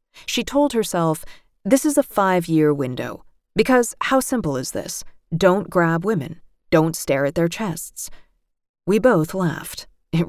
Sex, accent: female, American